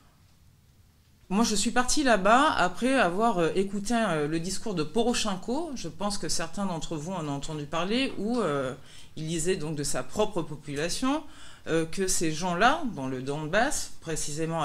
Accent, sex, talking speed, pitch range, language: French, female, 170 wpm, 140-190 Hz, French